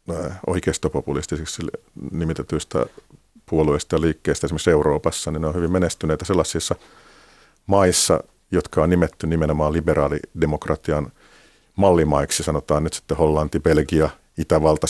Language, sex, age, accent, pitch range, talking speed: Finnish, male, 50-69, native, 75-90 Hz, 105 wpm